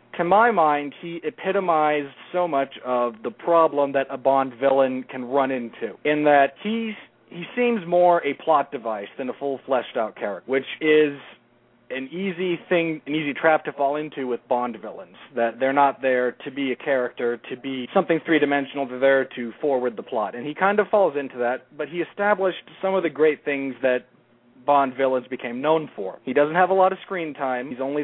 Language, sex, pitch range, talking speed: English, male, 125-155 Hz, 195 wpm